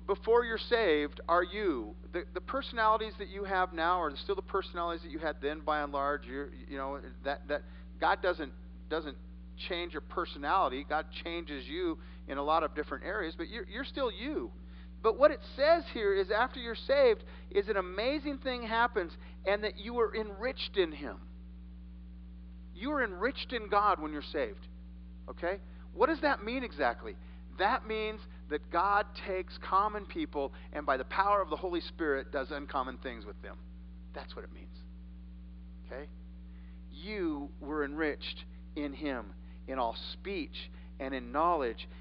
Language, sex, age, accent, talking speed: English, male, 50-69, American, 170 wpm